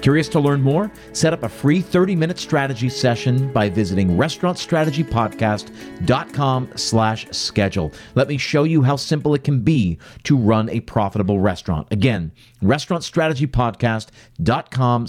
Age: 50-69